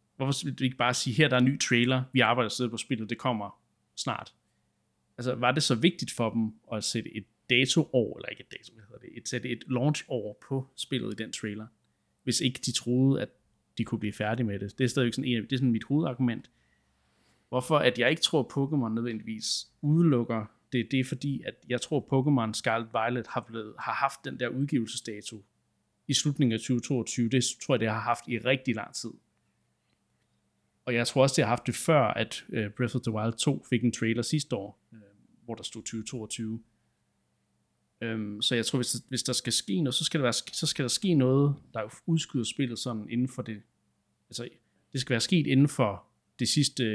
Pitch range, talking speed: 110-130 Hz, 215 wpm